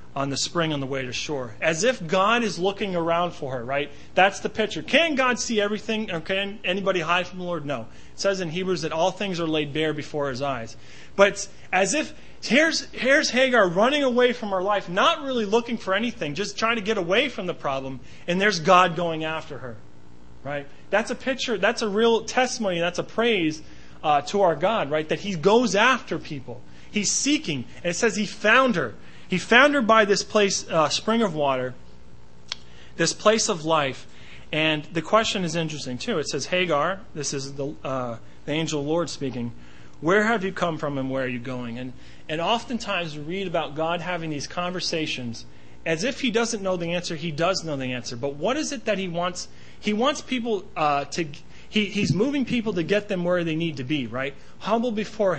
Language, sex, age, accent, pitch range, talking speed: English, male, 30-49, American, 145-215 Hz, 210 wpm